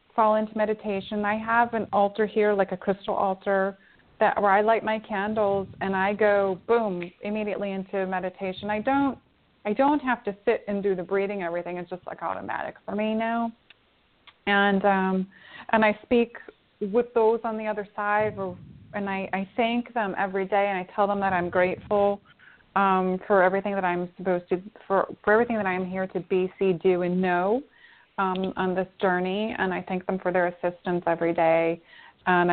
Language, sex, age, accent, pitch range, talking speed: English, female, 30-49, American, 175-205 Hz, 190 wpm